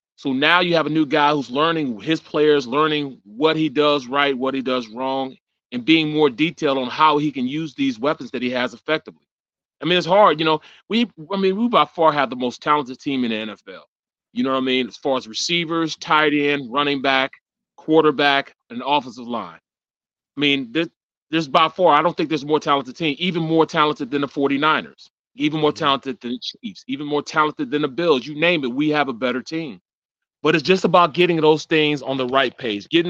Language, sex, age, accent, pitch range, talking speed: English, male, 30-49, American, 135-165 Hz, 225 wpm